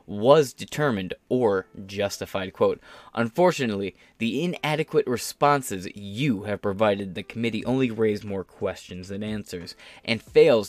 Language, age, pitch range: English, 20-39, 100-125 Hz